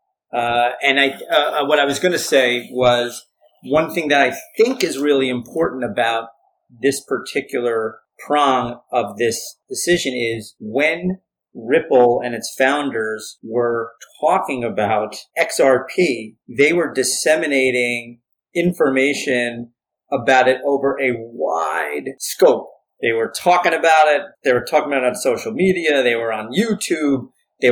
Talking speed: 140 wpm